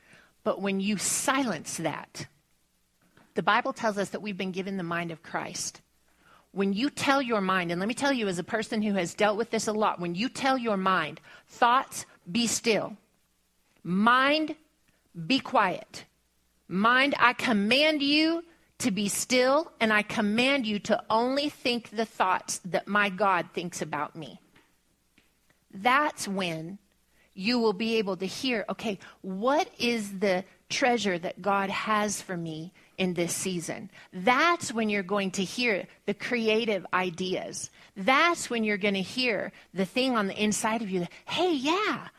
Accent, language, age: American, English, 40-59